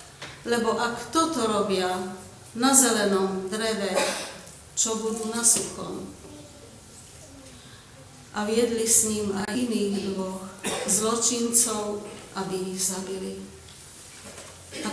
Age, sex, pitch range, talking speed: 40-59, female, 185-220 Hz, 90 wpm